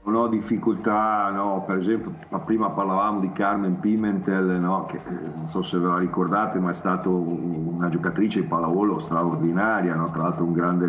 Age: 50-69